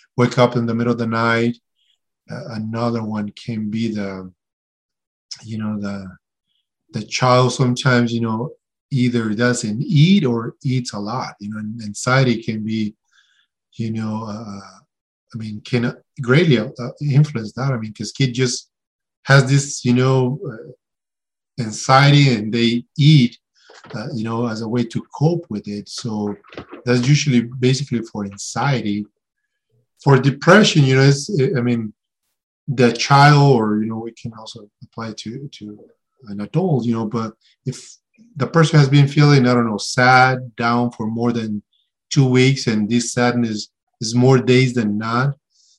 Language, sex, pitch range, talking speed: English, male, 110-135 Hz, 155 wpm